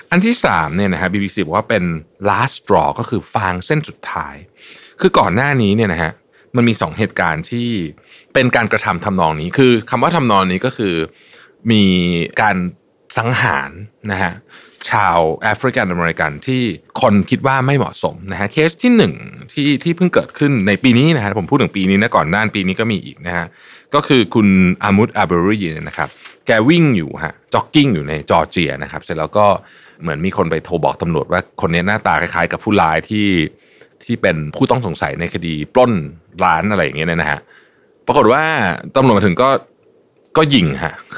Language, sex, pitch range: Thai, male, 90-135 Hz